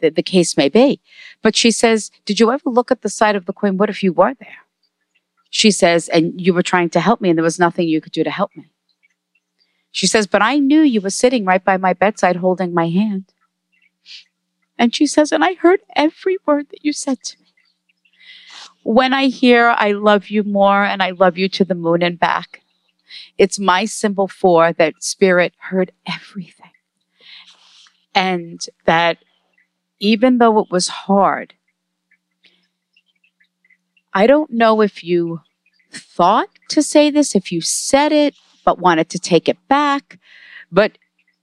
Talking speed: 175 wpm